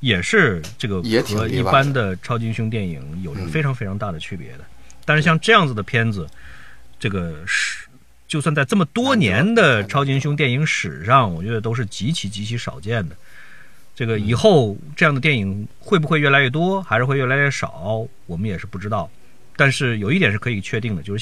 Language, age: Chinese, 50-69